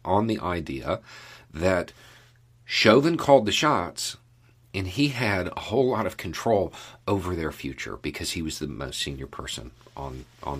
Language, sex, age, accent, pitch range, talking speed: English, male, 50-69, American, 85-120 Hz, 160 wpm